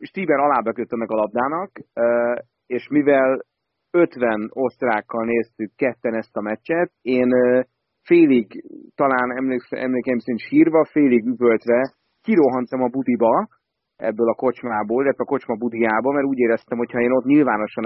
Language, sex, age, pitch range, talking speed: Hungarian, male, 30-49, 110-130 Hz, 135 wpm